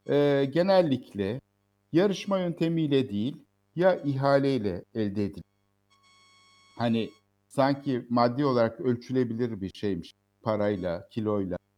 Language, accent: Turkish, native